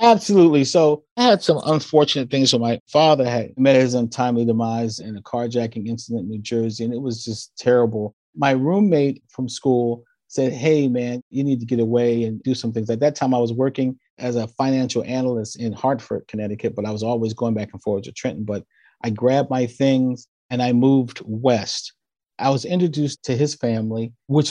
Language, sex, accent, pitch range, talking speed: English, male, American, 120-155 Hz, 200 wpm